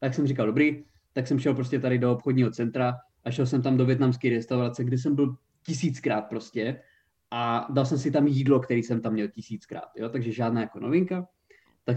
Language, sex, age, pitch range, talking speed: Czech, male, 20-39, 120-150 Hz, 205 wpm